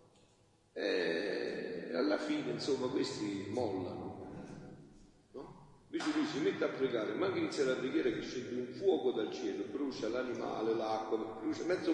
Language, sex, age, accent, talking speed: Italian, male, 40-59, native, 145 wpm